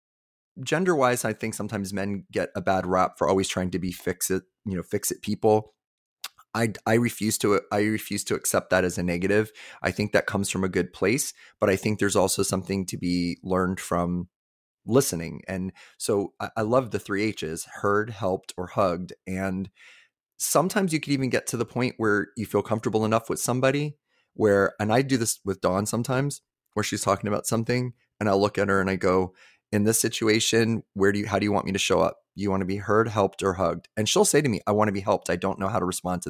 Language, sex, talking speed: English, male, 235 wpm